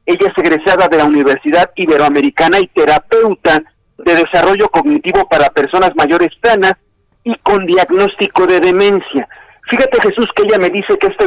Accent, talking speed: Mexican, 155 wpm